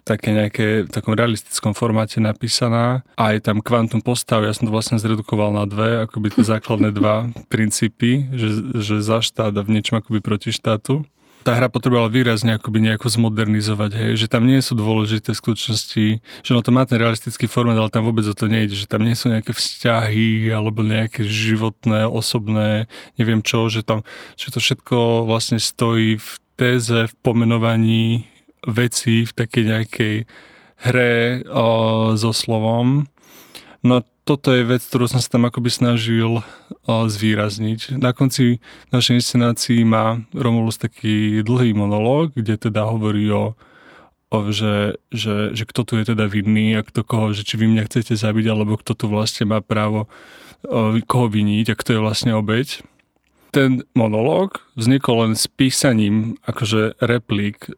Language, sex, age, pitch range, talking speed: Slovak, male, 20-39, 110-120 Hz, 160 wpm